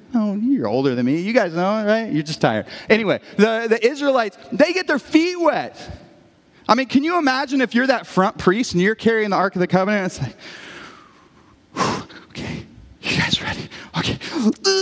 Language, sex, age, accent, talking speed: English, male, 30-49, American, 190 wpm